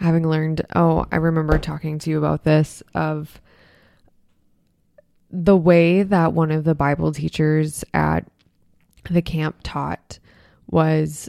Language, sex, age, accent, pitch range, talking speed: English, female, 20-39, American, 150-170 Hz, 130 wpm